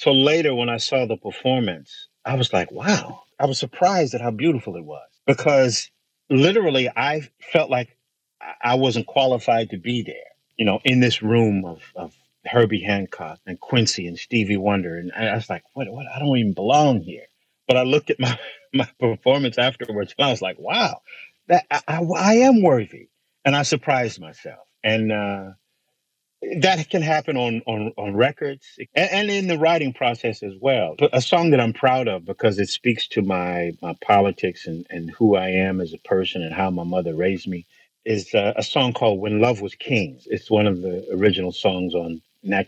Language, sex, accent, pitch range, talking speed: English, male, American, 95-135 Hz, 190 wpm